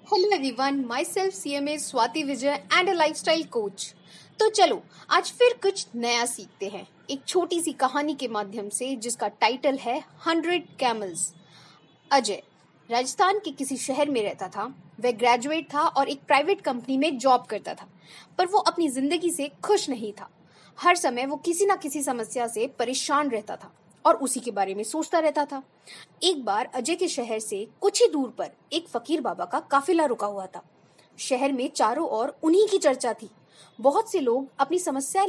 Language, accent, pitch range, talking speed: Hindi, native, 235-335 Hz, 175 wpm